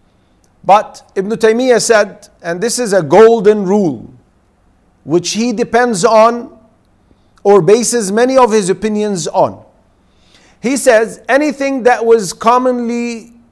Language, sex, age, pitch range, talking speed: English, male, 50-69, 185-255 Hz, 120 wpm